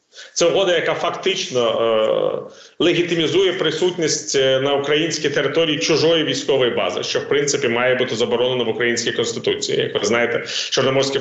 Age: 40-59